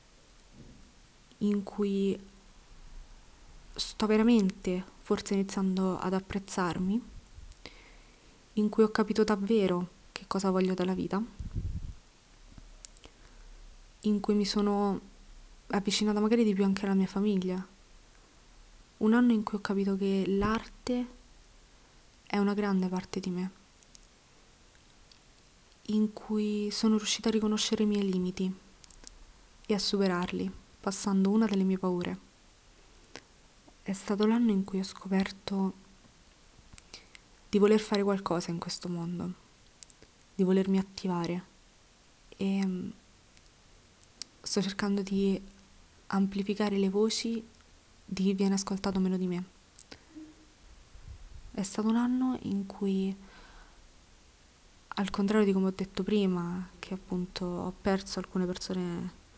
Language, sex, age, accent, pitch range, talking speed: Italian, female, 20-39, native, 190-210 Hz, 110 wpm